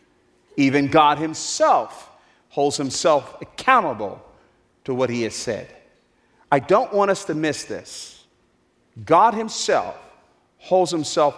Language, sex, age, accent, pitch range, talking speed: English, male, 40-59, American, 125-185 Hz, 115 wpm